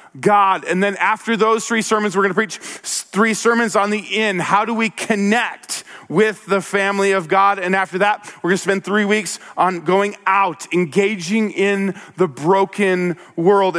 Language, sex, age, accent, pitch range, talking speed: English, male, 40-59, American, 180-215 Hz, 185 wpm